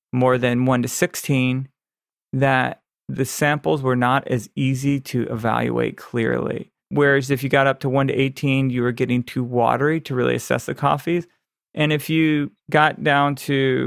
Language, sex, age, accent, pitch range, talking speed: English, male, 40-59, American, 125-145 Hz, 175 wpm